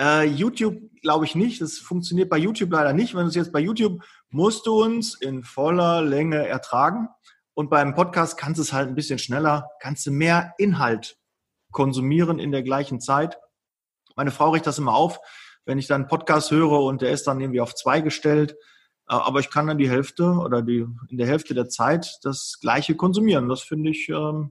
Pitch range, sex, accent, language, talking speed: 140-175 Hz, male, German, German, 200 wpm